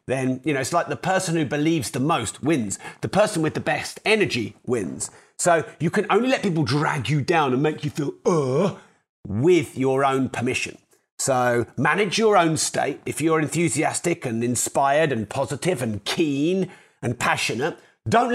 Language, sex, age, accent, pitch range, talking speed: English, male, 40-59, British, 130-185 Hz, 175 wpm